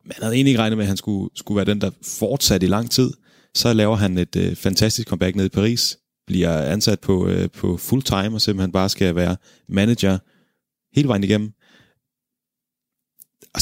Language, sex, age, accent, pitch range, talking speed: Danish, male, 30-49, native, 95-110 Hz, 195 wpm